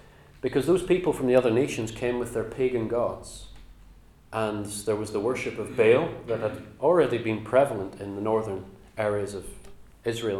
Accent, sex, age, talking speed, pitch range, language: British, male, 40-59, 175 wpm, 105-130 Hz, English